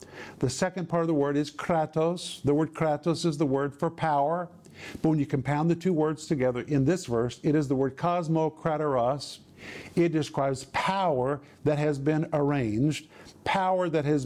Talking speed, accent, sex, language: 175 wpm, American, male, English